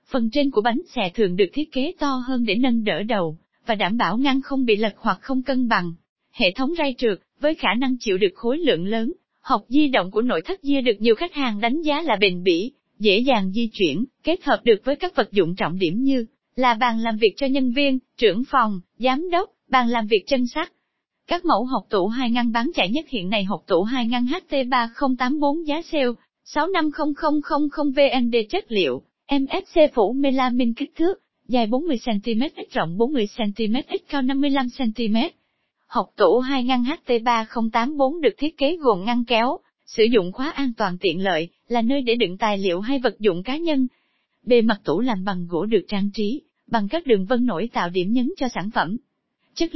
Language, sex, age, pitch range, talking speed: Vietnamese, female, 20-39, 220-280 Hz, 205 wpm